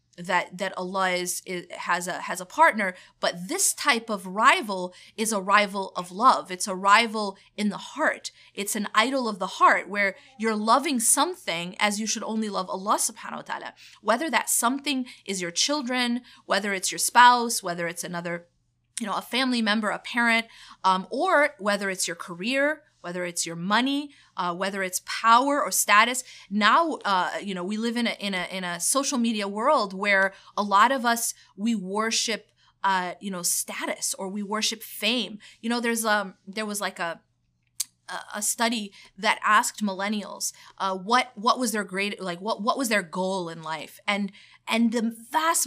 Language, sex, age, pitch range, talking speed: English, female, 30-49, 190-235 Hz, 185 wpm